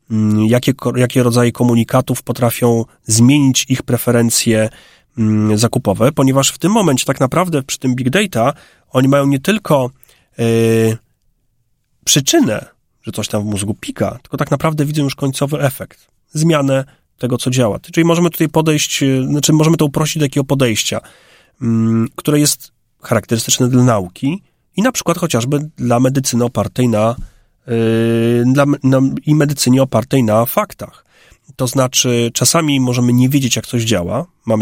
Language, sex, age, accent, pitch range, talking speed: Polish, male, 30-49, native, 110-140 Hz, 145 wpm